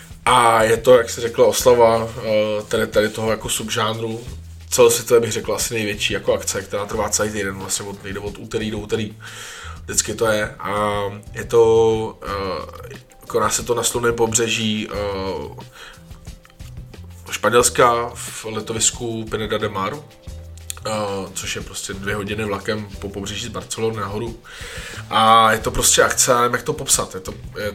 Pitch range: 105-120 Hz